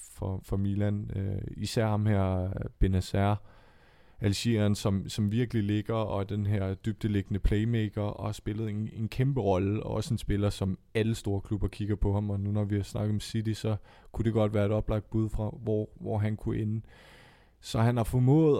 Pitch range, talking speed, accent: 105-120 Hz, 195 wpm, native